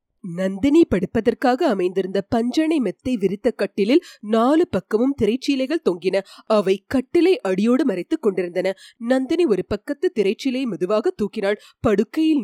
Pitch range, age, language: 195-280 Hz, 30-49, Tamil